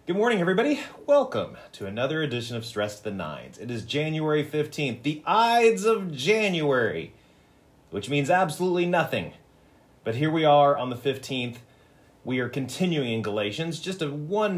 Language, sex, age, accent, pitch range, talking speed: English, male, 30-49, American, 105-145 Hz, 160 wpm